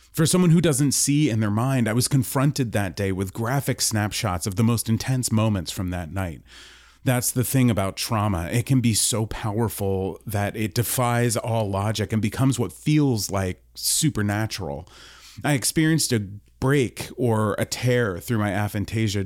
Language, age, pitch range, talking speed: English, 30-49, 85-110 Hz, 170 wpm